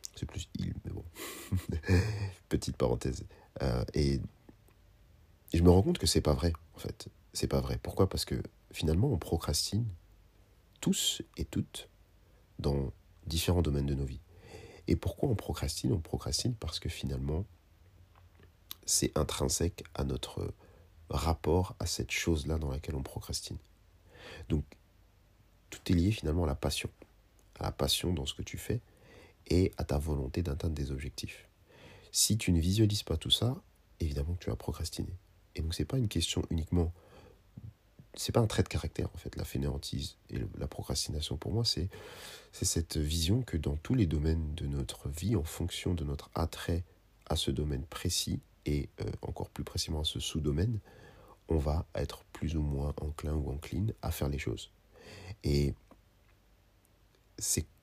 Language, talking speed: French, 170 wpm